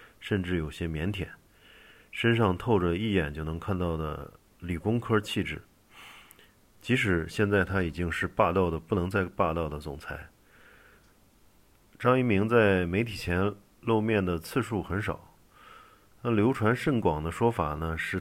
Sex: male